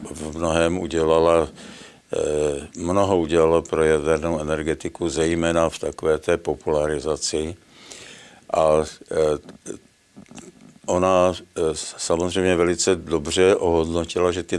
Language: Czech